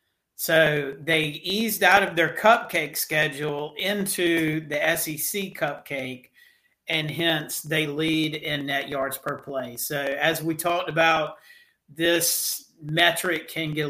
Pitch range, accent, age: 145-165 Hz, American, 40-59